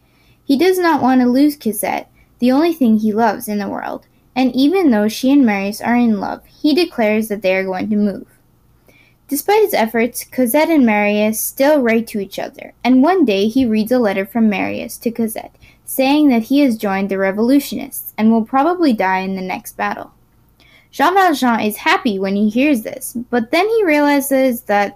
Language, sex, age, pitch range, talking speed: English, female, 10-29, 215-280 Hz, 195 wpm